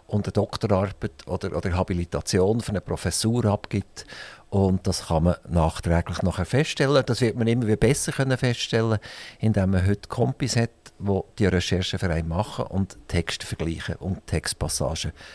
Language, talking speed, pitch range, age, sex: German, 160 wpm, 95-120 Hz, 50-69, male